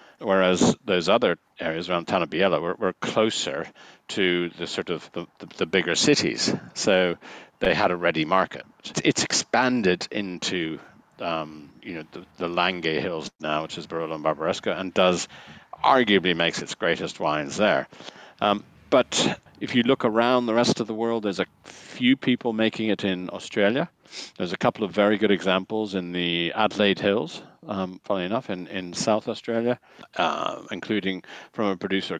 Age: 50-69